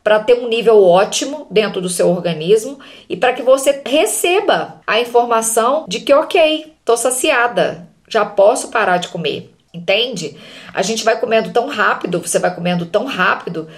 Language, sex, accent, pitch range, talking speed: Portuguese, female, Brazilian, 190-250 Hz, 165 wpm